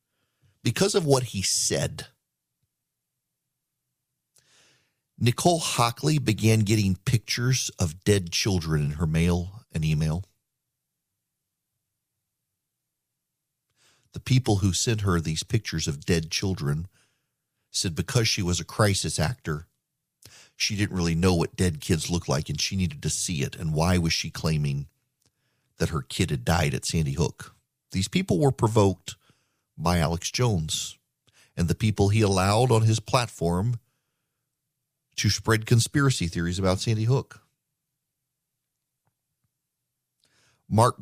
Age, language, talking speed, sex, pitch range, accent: 40-59, English, 125 wpm, male, 90-135 Hz, American